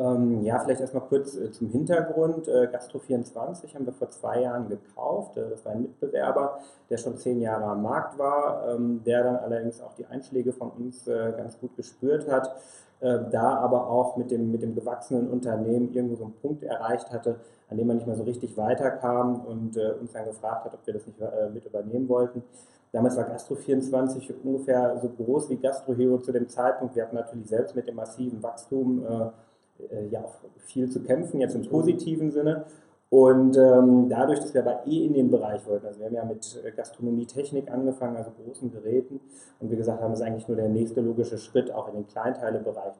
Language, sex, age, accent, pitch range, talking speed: German, male, 30-49, German, 110-125 Hz, 185 wpm